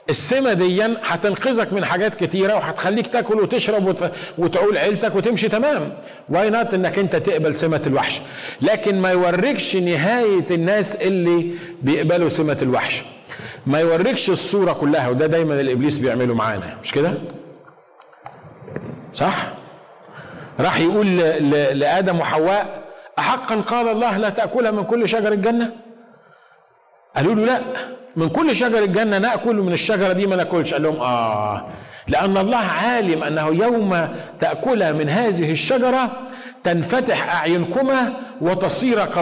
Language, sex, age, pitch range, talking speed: Arabic, male, 50-69, 160-225 Hz, 130 wpm